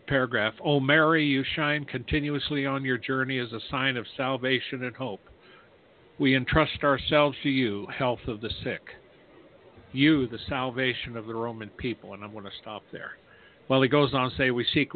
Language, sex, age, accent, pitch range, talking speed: English, male, 50-69, American, 115-140 Hz, 190 wpm